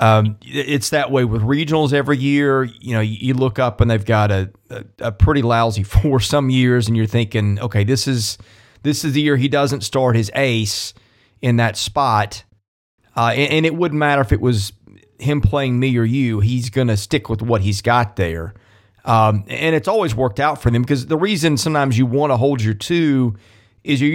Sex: male